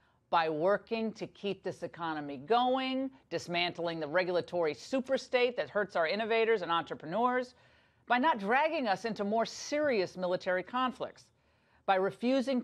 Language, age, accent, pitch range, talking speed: English, 40-59, American, 175-260 Hz, 135 wpm